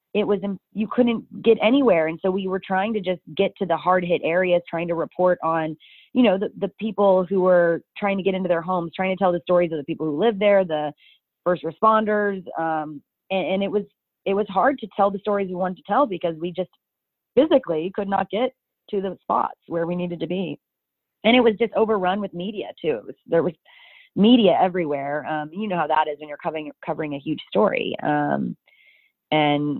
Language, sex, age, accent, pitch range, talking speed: English, female, 30-49, American, 150-195 Hz, 215 wpm